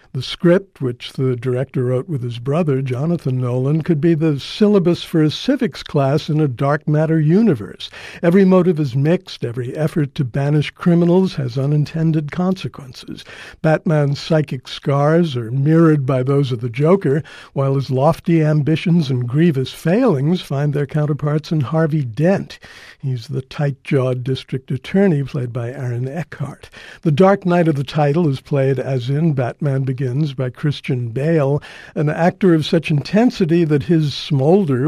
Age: 60-79